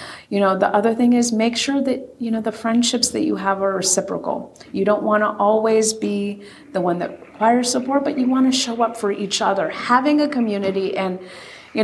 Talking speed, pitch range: 220 wpm, 180-245 Hz